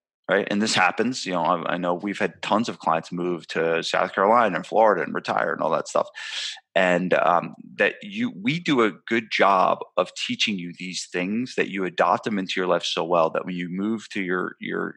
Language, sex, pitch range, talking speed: English, male, 90-110 Hz, 225 wpm